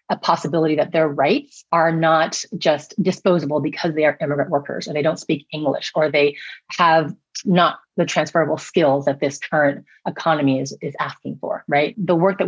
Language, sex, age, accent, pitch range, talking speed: English, female, 30-49, American, 155-200 Hz, 185 wpm